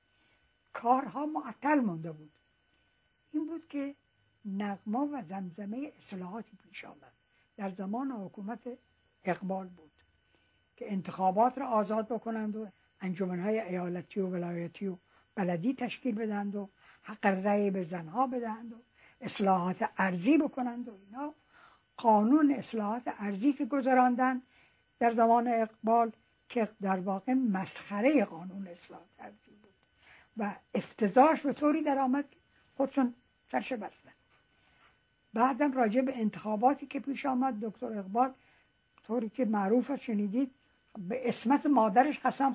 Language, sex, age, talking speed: Persian, female, 60-79, 120 wpm